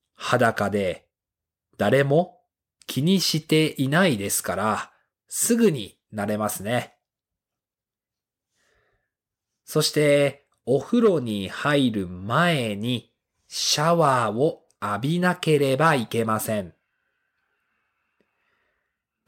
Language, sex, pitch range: Japanese, male, 105-155 Hz